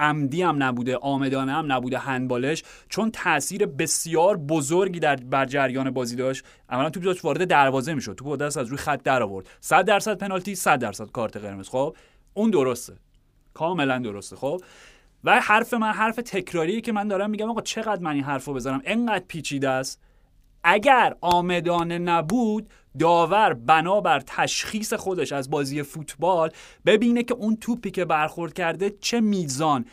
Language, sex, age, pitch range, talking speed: Persian, male, 30-49, 135-190 Hz, 155 wpm